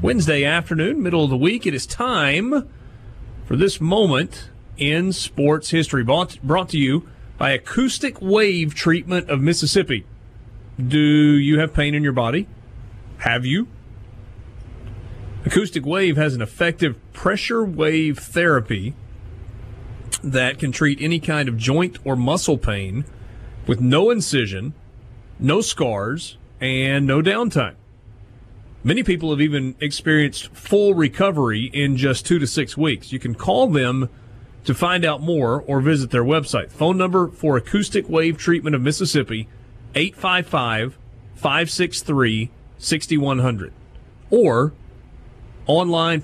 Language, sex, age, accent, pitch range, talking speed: English, male, 40-59, American, 115-165 Hz, 125 wpm